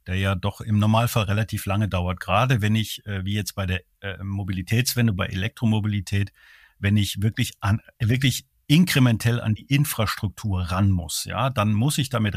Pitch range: 105-130 Hz